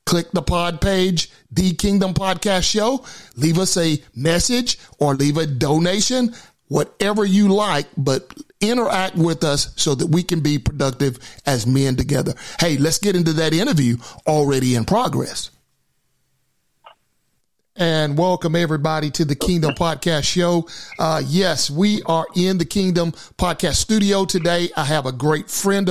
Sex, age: male, 40-59